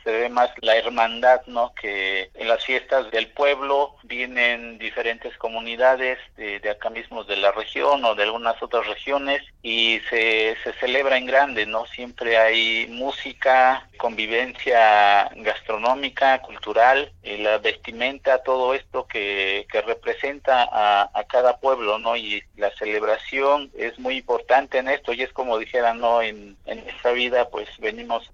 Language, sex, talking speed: Spanish, male, 150 wpm